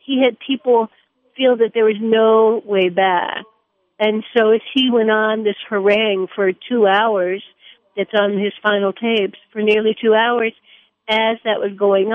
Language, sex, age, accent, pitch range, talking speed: English, female, 60-79, American, 195-225 Hz, 170 wpm